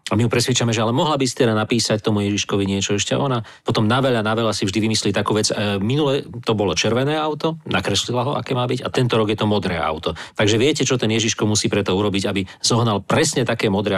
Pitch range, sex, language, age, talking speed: 105-125 Hz, male, Slovak, 40-59, 230 wpm